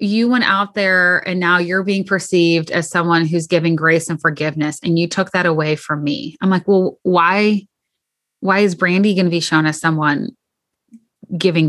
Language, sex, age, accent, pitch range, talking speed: English, female, 20-39, American, 165-200 Hz, 190 wpm